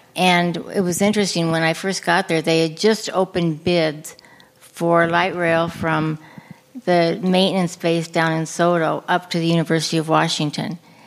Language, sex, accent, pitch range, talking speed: English, female, American, 165-185 Hz, 165 wpm